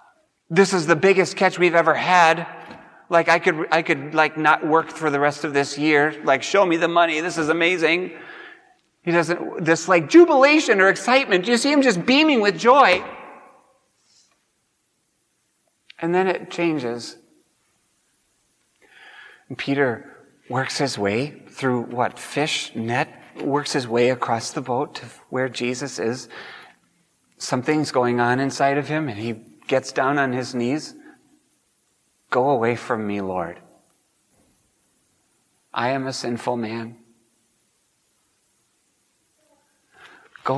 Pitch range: 120-170 Hz